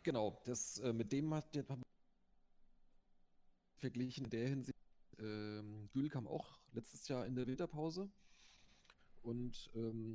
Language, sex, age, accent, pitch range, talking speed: German, male, 30-49, German, 95-115 Hz, 130 wpm